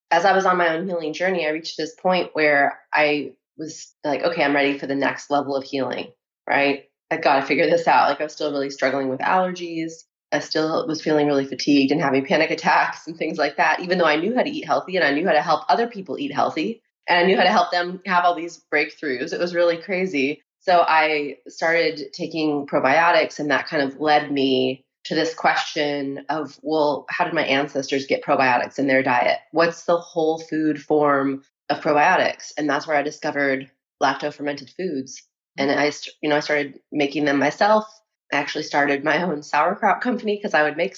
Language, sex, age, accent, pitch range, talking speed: English, female, 20-39, American, 145-175 Hz, 215 wpm